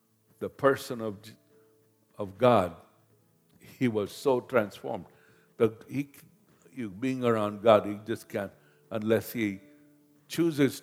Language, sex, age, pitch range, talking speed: English, male, 60-79, 95-125 Hz, 115 wpm